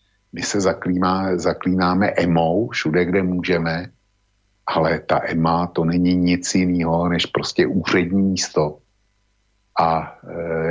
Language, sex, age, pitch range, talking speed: Slovak, male, 50-69, 85-100 Hz, 120 wpm